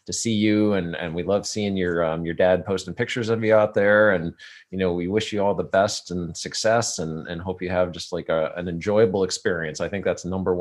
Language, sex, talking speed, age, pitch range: English, male, 250 wpm, 30-49, 90-115 Hz